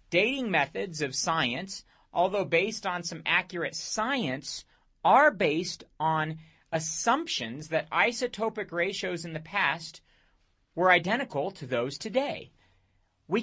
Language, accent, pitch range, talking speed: English, American, 150-215 Hz, 115 wpm